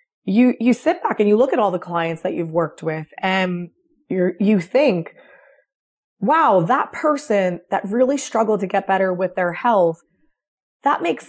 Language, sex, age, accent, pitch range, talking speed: English, female, 20-39, American, 185-250 Hz, 175 wpm